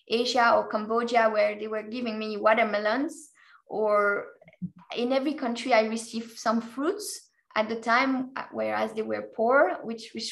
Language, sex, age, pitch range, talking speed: English, female, 20-39, 225-250 Hz, 150 wpm